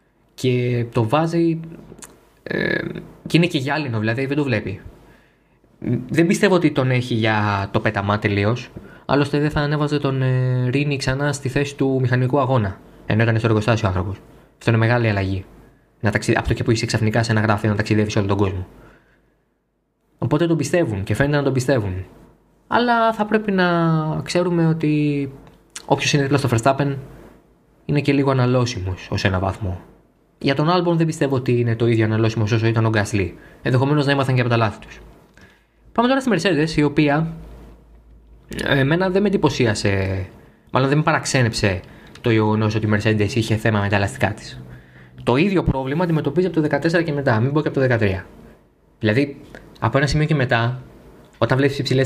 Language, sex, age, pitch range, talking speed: Greek, male, 20-39, 110-150 Hz, 180 wpm